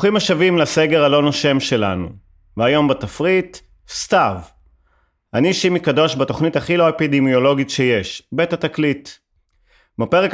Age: 30-49